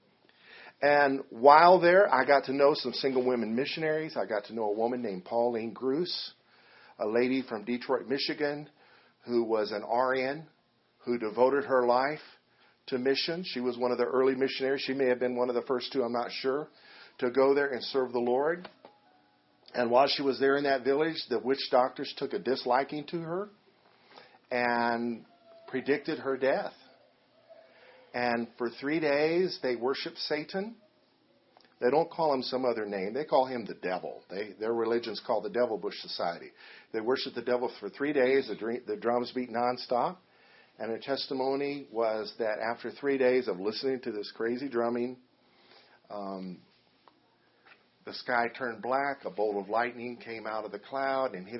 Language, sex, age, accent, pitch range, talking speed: English, male, 50-69, American, 120-140 Hz, 175 wpm